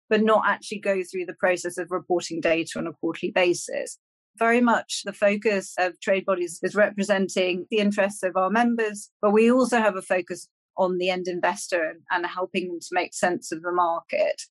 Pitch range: 180-210 Hz